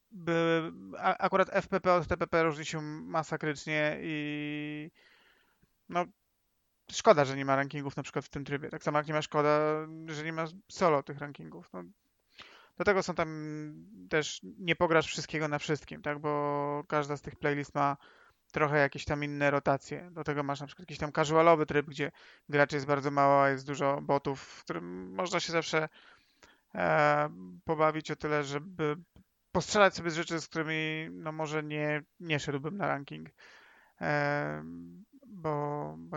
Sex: male